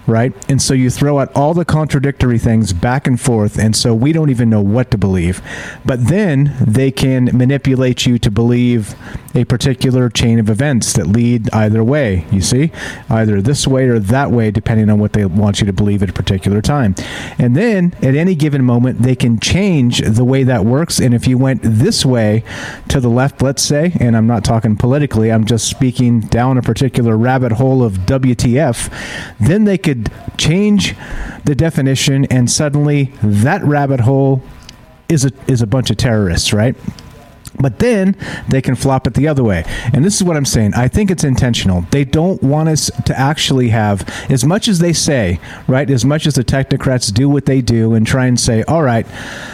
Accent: American